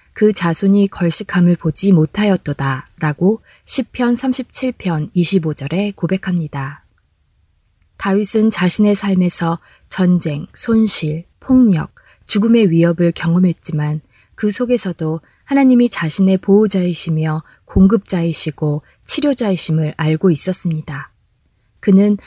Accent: native